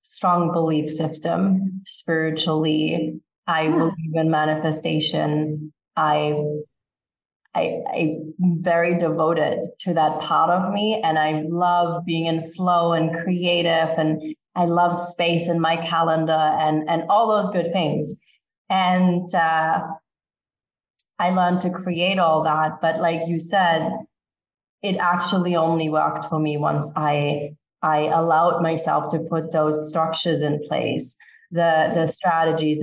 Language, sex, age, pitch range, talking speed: English, female, 20-39, 160-180 Hz, 130 wpm